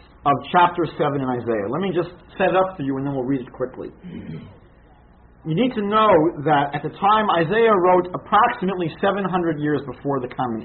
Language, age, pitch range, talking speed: English, 40-59, 125-180 Hz, 195 wpm